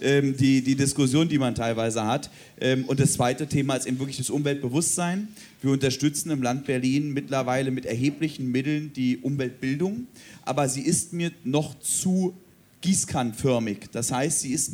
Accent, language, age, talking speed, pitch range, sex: German, German, 40-59, 155 wpm, 125-150 Hz, male